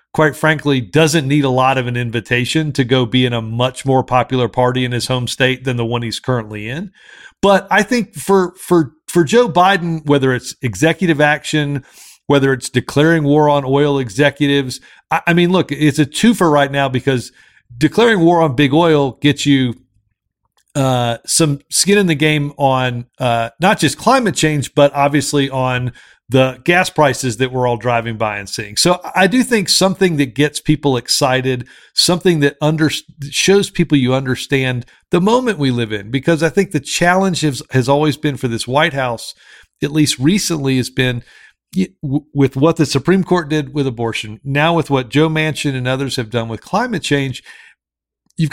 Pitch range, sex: 130-165 Hz, male